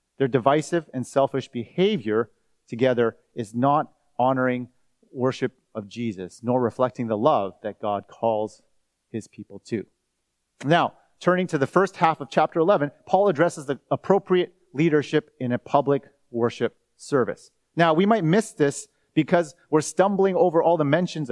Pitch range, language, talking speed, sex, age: 130-175 Hz, English, 150 wpm, male, 30-49